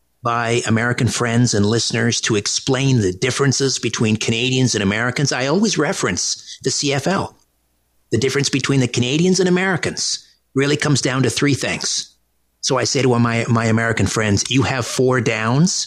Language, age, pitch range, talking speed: English, 50-69, 100-140 Hz, 165 wpm